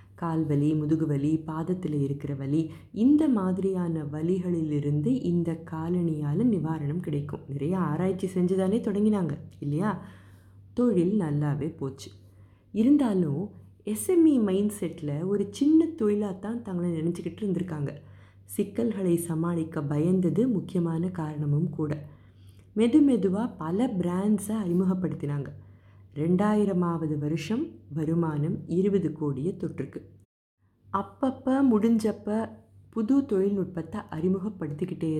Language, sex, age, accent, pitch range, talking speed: Tamil, female, 30-49, native, 145-205 Hz, 95 wpm